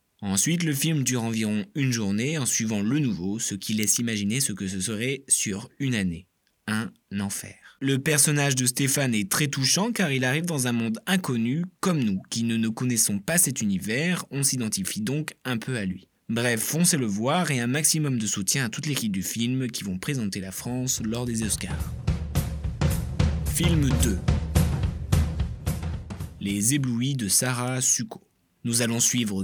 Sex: male